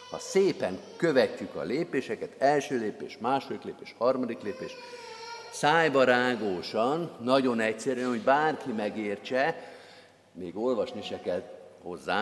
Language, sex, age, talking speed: Hungarian, male, 50-69, 110 wpm